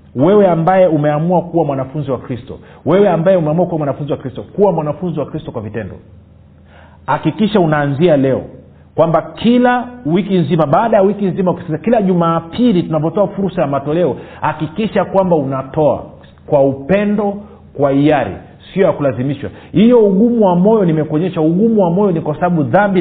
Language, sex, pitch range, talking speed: Swahili, male, 140-205 Hz, 155 wpm